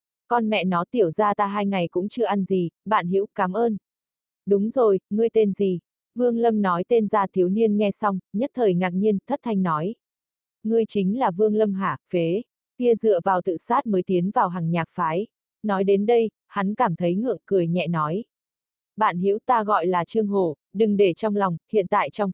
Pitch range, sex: 185-220 Hz, female